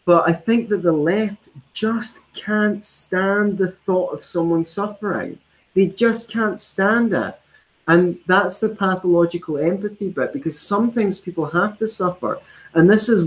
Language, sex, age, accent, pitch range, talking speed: English, male, 30-49, British, 135-195 Hz, 155 wpm